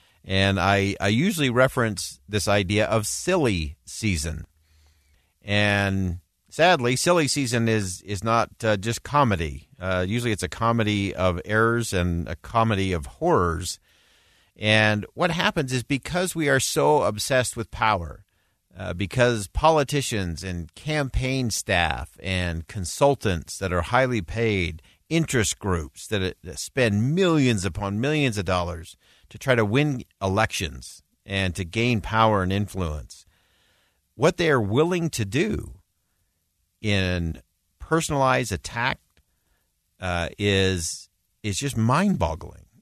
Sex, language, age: male, English, 50-69